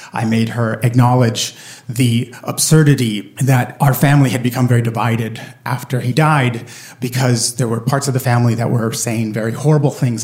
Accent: American